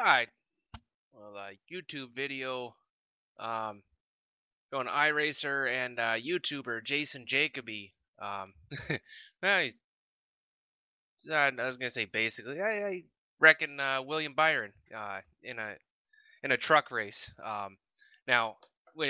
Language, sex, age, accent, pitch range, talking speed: English, male, 20-39, American, 105-135 Hz, 115 wpm